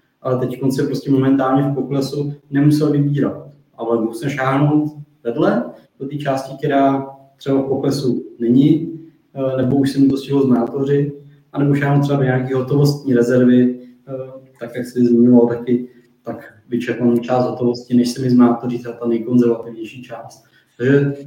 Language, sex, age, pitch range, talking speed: Czech, male, 20-39, 125-145 Hz, 140 wpm